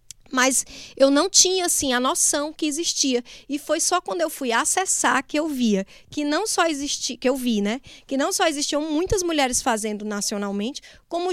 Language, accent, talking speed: Portuguese, Brazilian, 190 wpm